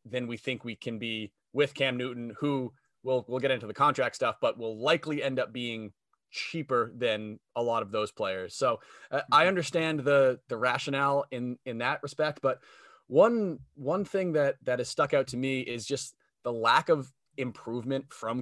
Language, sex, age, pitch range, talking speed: English, male, 20-39, 125-140 Hz, 190 wpm